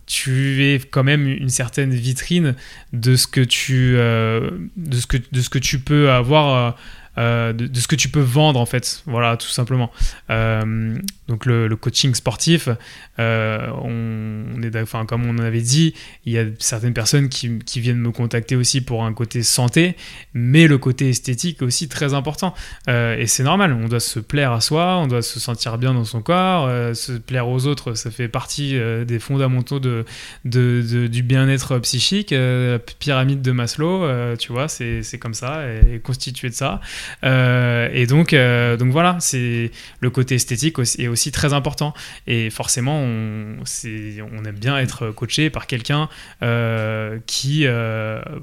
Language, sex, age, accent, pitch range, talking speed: French, male, 20-39, French, 115-140 Hz, 190 wpm